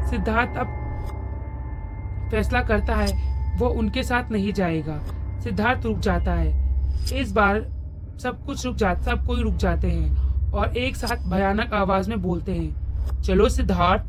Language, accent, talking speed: Hindi, native, 160 wpm